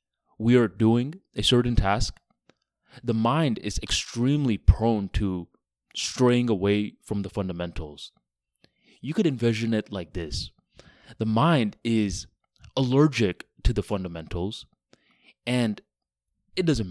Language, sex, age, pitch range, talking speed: English, male, 20-39, 95-125 Hz, 115 wpm